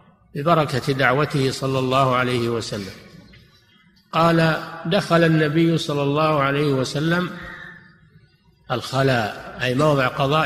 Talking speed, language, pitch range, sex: 100 wpm, Arabic, 135-165 Hz, male